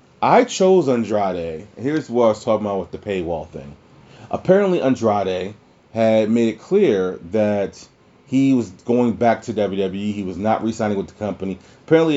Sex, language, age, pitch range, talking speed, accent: male, English, 30-49, 100-140 Hz, 170 wpm, American